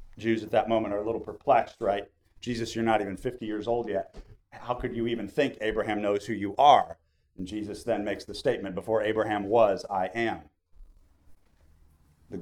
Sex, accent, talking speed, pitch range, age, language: male, American, 190 wpm, 100-130 Hz, 40-59, English